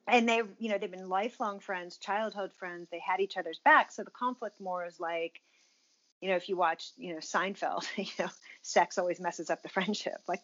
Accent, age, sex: American, 40-59, female